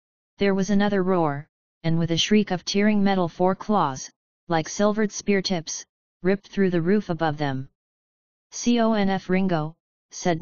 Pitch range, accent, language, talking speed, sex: 165-195 Hz, American, English, 150 wpm, female